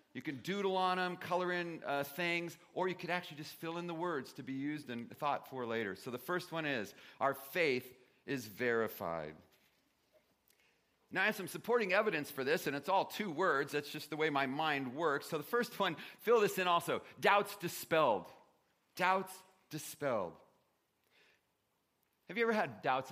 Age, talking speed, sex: 40-59, 185 wpm, male